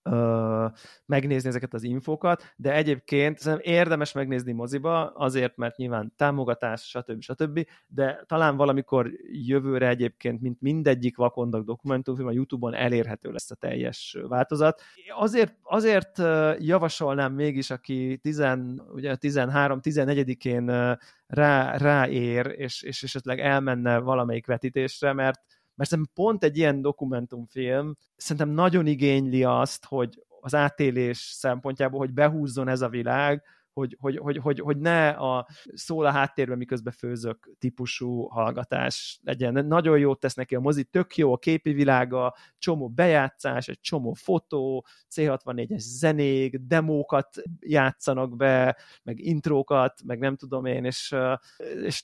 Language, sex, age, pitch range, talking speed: Hungarian, male, 30-49, 125-145 Hz, 125 wpm